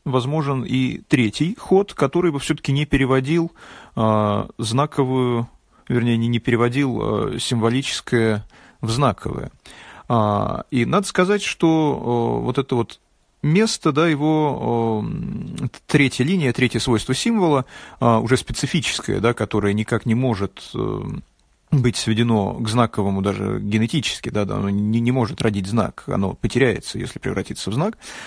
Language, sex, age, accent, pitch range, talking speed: Russian, male, 30-49, native, 115-145 Hz, 140 wpm